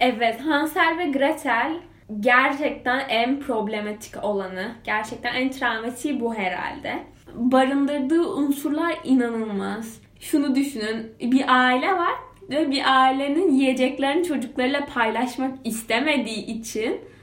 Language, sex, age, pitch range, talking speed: Turkish, female, 10-29, 225-280 Hz, 100 wpm